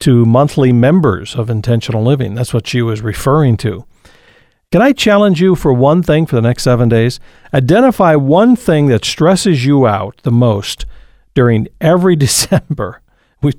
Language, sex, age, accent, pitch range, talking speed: English, male, 50-69, American, 120-145 Hz, 165 wpm